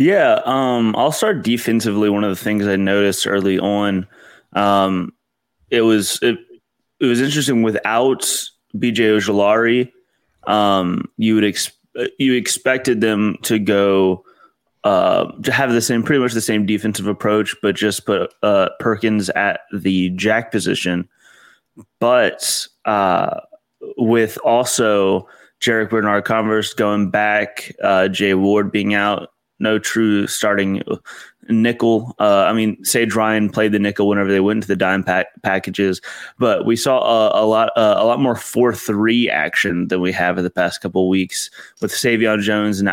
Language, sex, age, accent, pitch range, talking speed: English, male, 20-39, American, 100-115 Hz, 150 wpm